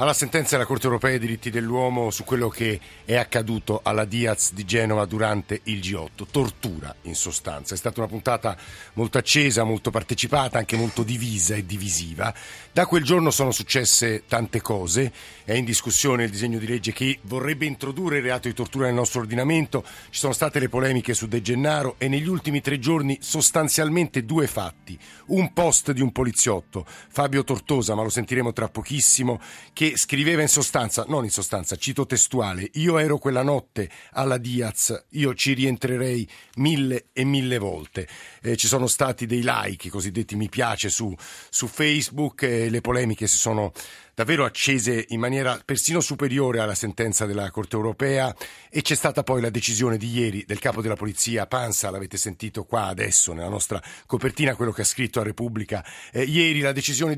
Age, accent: 50-69, native